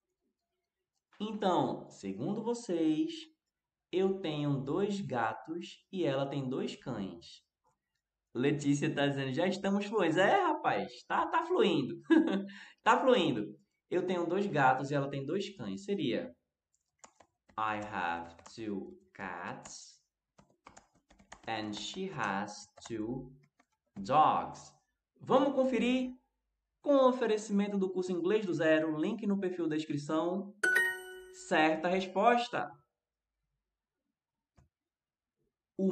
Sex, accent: male, Brazilian